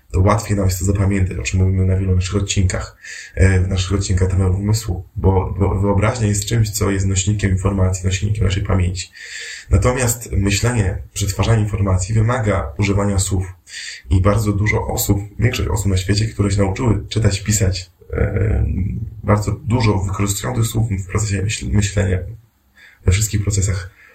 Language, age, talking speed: Polish, 20-39, 150 wpm